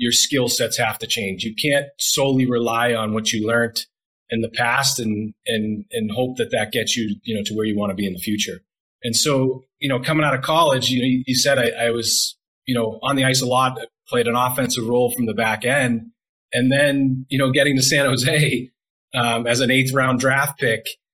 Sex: male